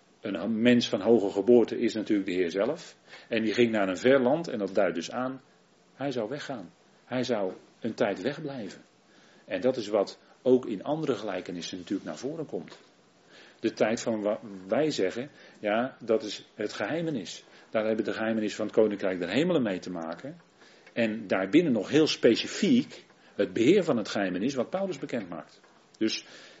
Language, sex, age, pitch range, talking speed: Dutch, male, 40-59, 110-150 Hz, 180 wpm